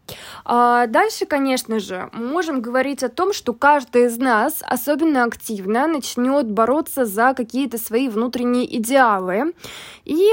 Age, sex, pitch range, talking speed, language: 20-39, female, 230-290 Hz, 130 wpm, Russian